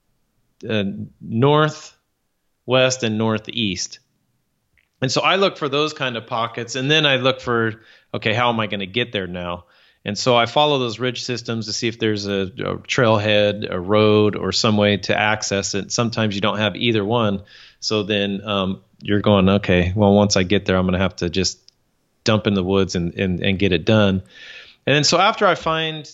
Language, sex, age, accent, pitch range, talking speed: English, male, 30-49, American, 100-125 Hz, 200 wpm